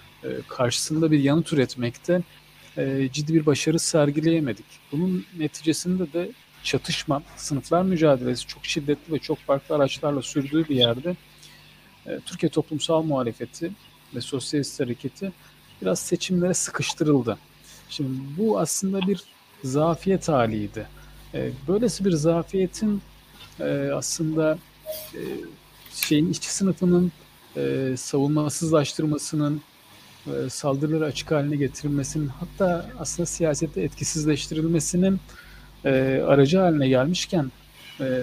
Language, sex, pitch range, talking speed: Turkish, male, 140-170 Hz, 100 wpm